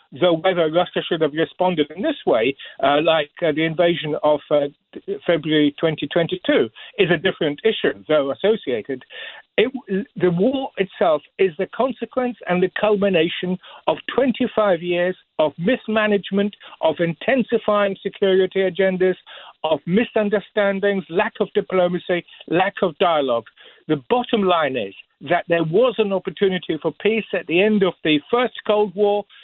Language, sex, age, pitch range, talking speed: English, male, 60-79, 170-215 Hz, 140 wpm